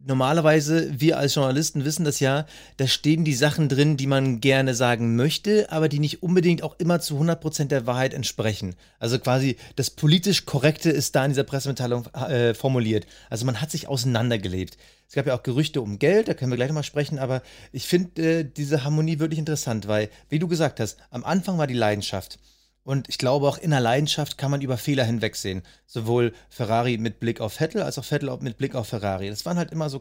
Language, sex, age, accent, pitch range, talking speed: German, male, 30-49, German, 125-150 Hz, 210 wpm